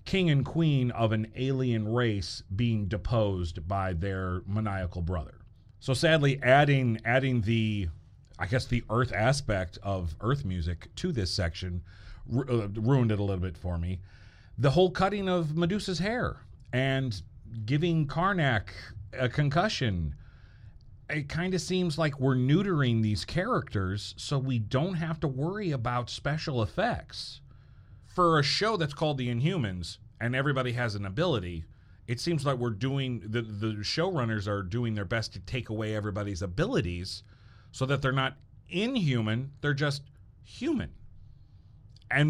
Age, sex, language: 40-59, male, English